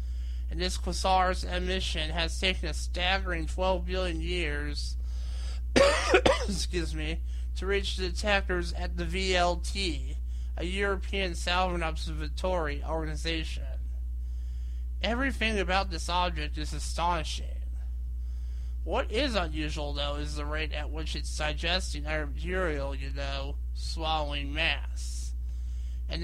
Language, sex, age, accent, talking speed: English, male, 20-39, American, 100 wpm